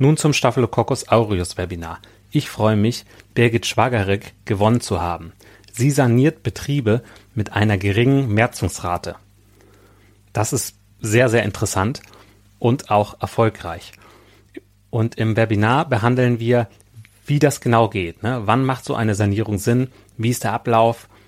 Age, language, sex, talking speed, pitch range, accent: 30-49, German, male, 135 wpm, 100-115 Hz, German